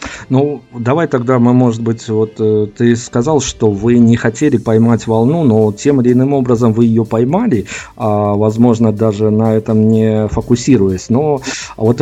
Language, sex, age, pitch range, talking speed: Russian, male, 50-69, 115-140 Hz, 165 wpm